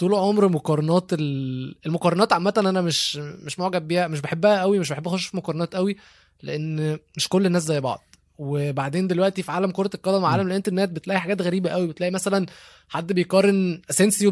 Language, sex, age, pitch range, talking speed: Arabic, male, 20-39, 150-195 Hz, 175 wpm